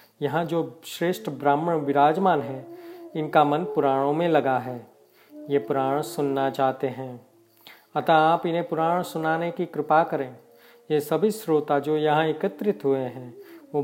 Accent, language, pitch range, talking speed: native, Hindi, 145-180 Hz, 145 wpm